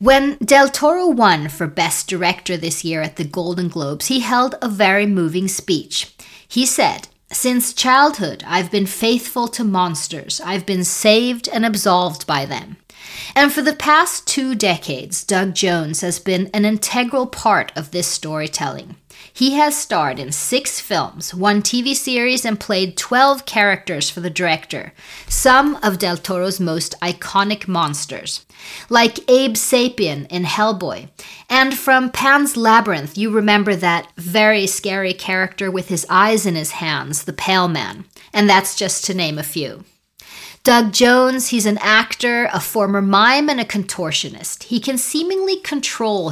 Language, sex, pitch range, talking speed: English, female, 175-245 Hz, 155 wpm